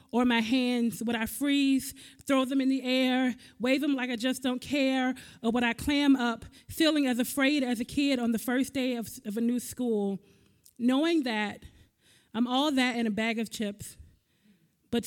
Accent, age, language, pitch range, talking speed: American, 20-39, English, 235-265 Hz, 195 wpm